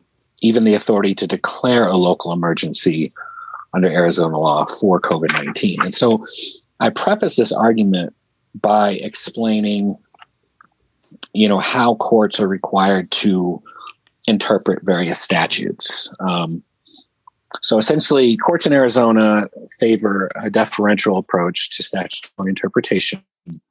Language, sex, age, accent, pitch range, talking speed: English, male, 40-59, American, 95-145 Hz, 110 wpm